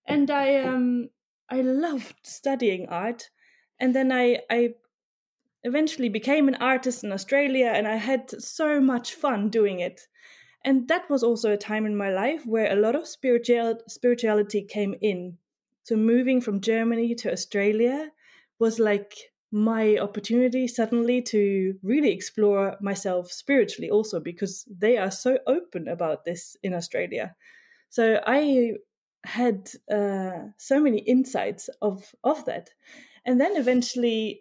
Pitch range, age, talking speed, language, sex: 205-260 Hz, 20-39, 140 wpm, Swedish, female